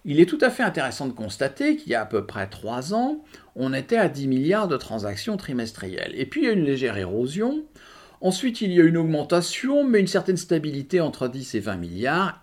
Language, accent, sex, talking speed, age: English, French, male, 225 wpm, 50-69